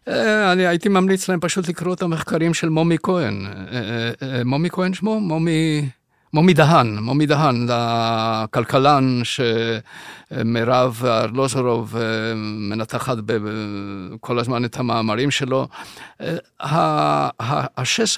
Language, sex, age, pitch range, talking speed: Hebrew, male, 50-69, 120-155 Hz, 95 wpm